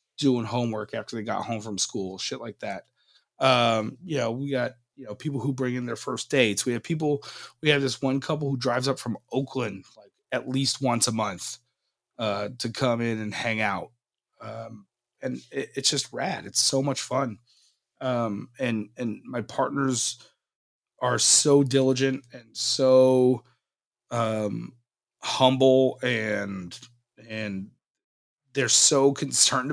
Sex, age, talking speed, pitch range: male, 30-49, 155 wpm, 115-135 Hz